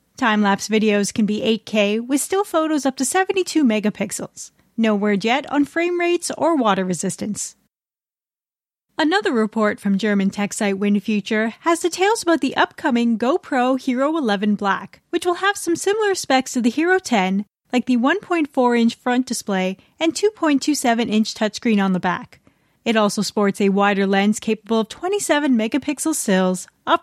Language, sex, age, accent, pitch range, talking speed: English, female, 30-49, American, 205-295 Hz, 155 wpm